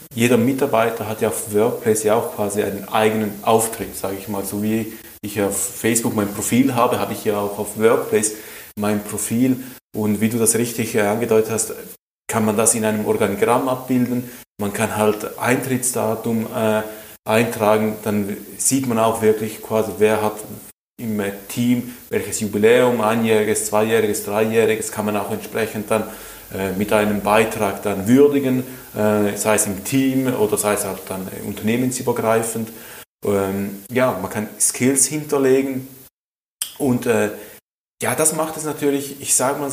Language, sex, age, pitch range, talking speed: German, male, 30-49, 105-130 Hz, 155 wpm